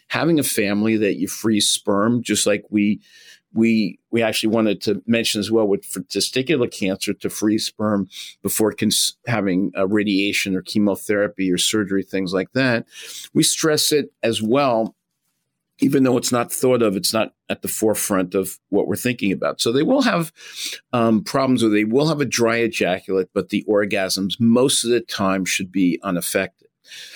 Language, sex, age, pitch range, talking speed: English, male, 50-69, 105-130 Hz, 175 wpm